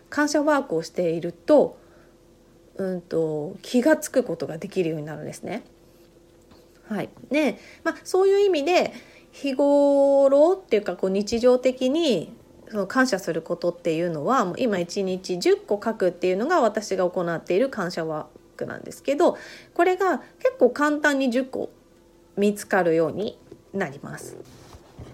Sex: female